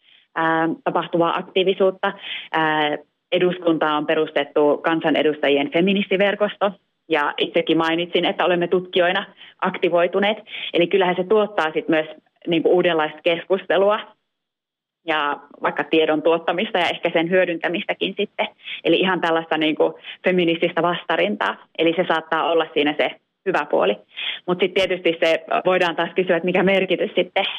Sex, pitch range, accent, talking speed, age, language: female, 160-185 Hz, native, 125 wpm, 30-49, Finnish